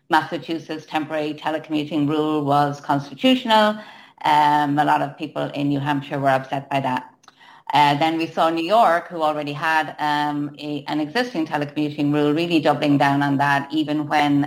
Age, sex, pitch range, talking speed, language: 30-49, female, 145-170 Hz, 160 wpm, English